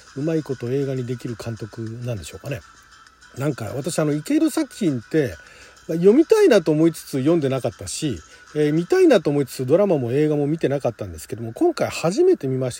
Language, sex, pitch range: Japanese, male, 130-195 Hz